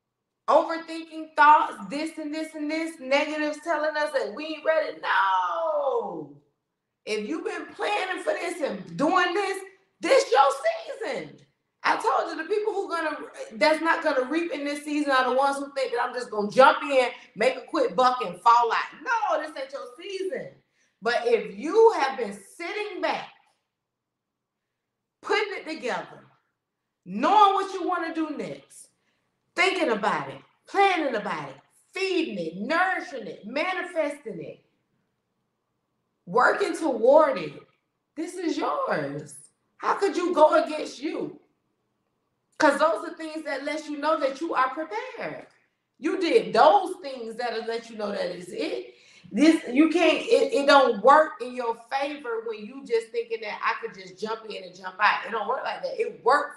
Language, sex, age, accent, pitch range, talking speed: English, female, 30-49, American, 250-345 Hz, 165 wpm